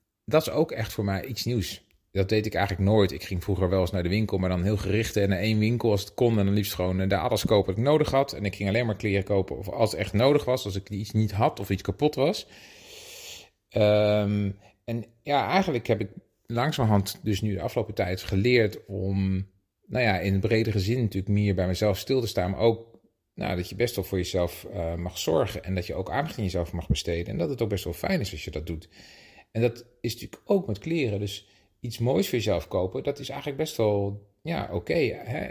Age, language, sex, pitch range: 40-59, Dutch, male, 95-115 Hz